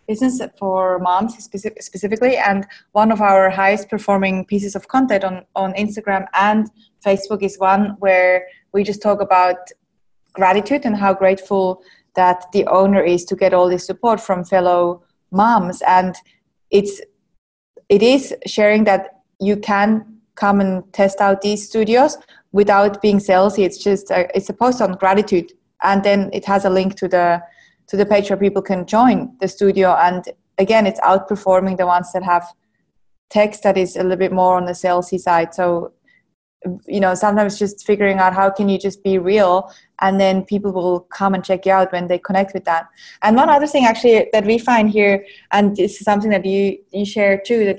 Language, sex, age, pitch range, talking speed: English, female, 20-39, 190-210 Hz, 185 wpm